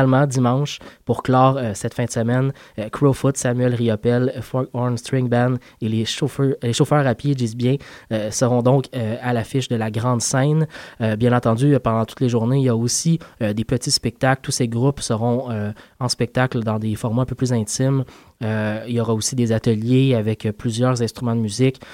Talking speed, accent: 215 wpm, Canadian